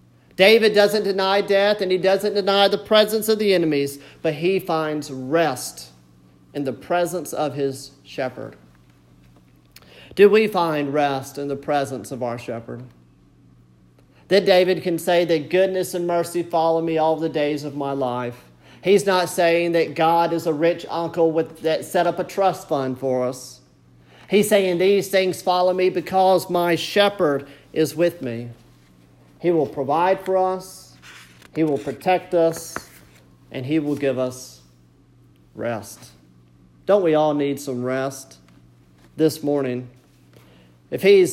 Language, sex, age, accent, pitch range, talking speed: English, male, 40-59, American, 125-185 Hz, 150 wpm